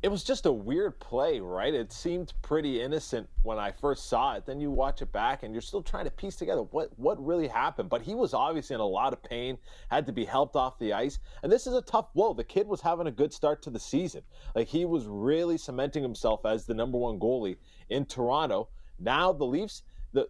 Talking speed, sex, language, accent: 240 wpm, male, English, American